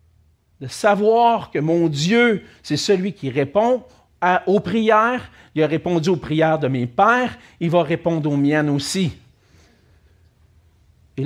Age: 50-69